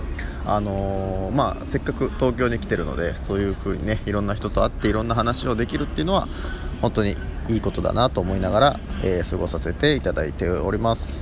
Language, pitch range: Japanese, 85-115 Hz